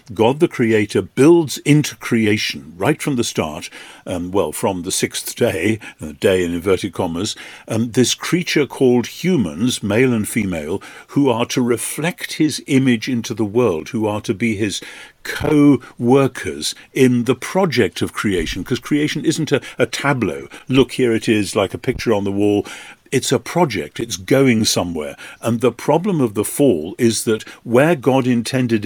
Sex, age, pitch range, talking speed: male, 50-69, 105-135 Hz, 175 wpm